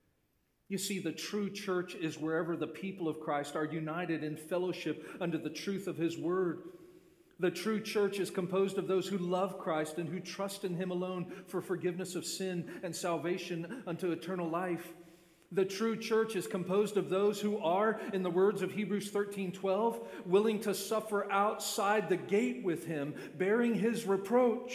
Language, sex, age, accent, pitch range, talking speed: English, male, 40-59, American, 155-195 Hz, 175 wpm